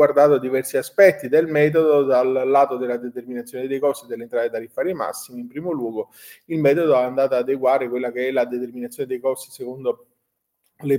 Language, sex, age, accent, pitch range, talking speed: Italian, male, 30-49, native, 120-150 Hz, 175 wpm